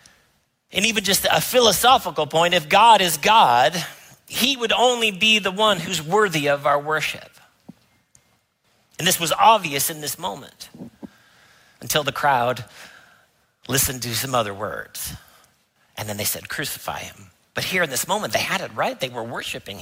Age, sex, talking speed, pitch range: 40-59, male, 165 wpm, 135-220 Hz